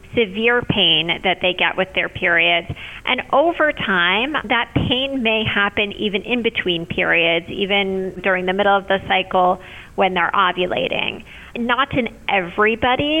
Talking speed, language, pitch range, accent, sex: 145 wpm, English, 185-235 Hz, American, female